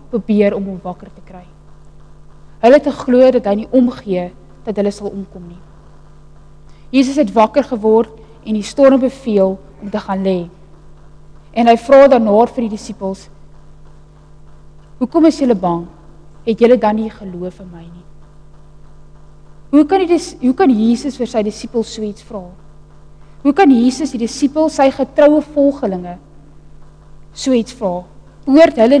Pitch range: 150-250 Hz